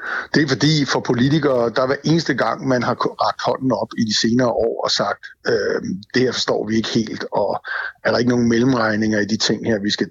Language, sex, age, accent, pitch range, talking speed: Danish, male, 60-79, native, 115-130 Hz, 235 wpm